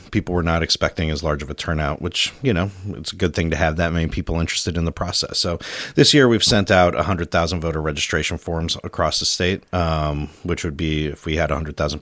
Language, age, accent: English, 30-49, American